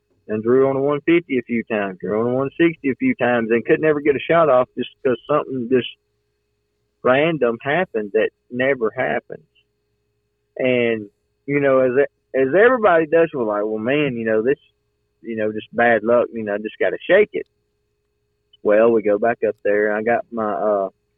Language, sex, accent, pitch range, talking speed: English, male, American, 105-130 Hz, 195 wpm